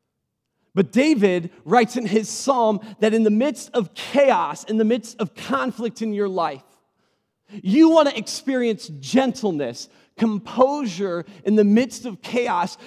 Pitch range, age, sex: 200-250 Hz, 40-59, male